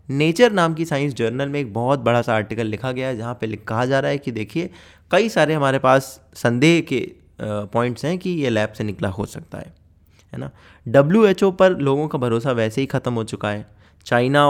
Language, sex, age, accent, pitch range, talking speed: Hindi, male, 20-39, native, 110-150 Hz, 225 wpm